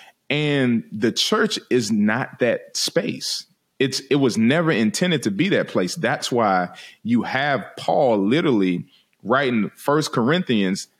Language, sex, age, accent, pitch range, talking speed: English, male, 30-49, American, 115-150 Hz, 135 wpm